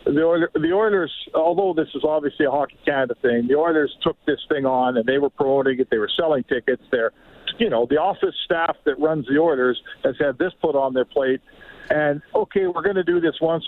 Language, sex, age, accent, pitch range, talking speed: English, male, 50-69, American, 135-170 Hz, 225 wpm